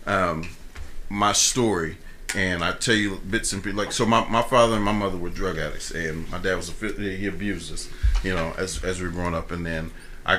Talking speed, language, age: 230 wpm, English, 40-59